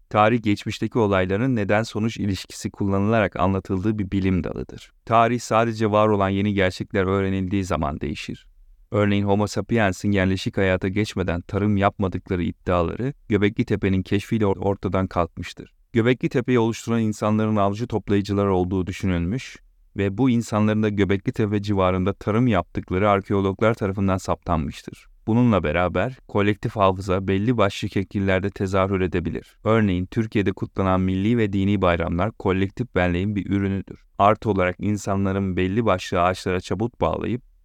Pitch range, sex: 95-110 Hz, male